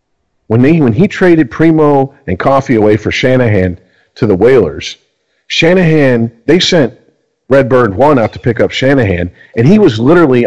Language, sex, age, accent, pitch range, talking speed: English, male, 40-59, American, 105-150 Hz, 160 wpm